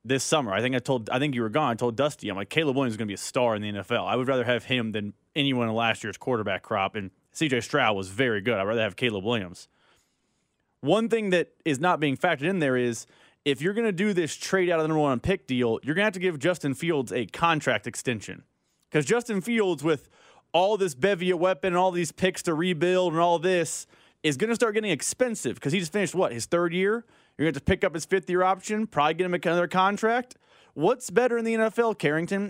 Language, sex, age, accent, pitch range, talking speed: English, male, 30-49, American, 135-190 Hz, 255 wpm